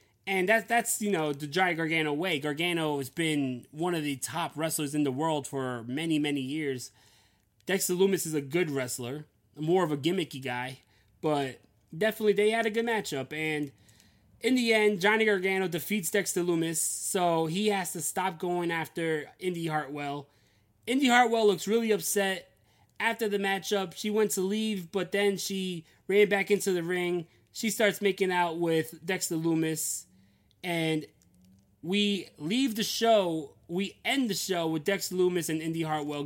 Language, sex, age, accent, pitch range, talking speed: English, male, 20-39, American, 145-205 Hz, 165 wpm